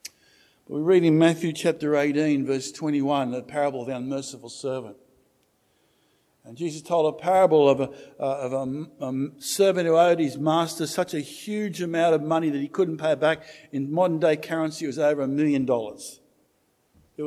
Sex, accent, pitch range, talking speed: male, Australian, 150-215 Hz, 175 wpm